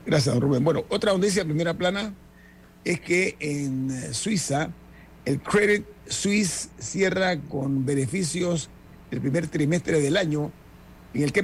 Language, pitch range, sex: Spanish, 135-175 Hz, male